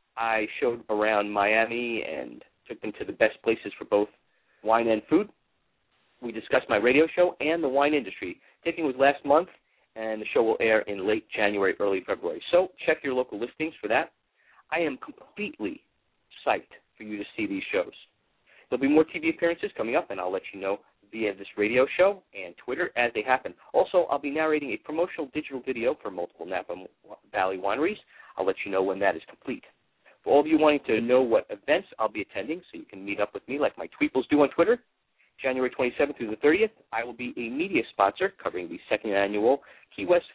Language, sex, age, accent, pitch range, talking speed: English, male, 40-59, American, 110-170 Hz, 210 wpm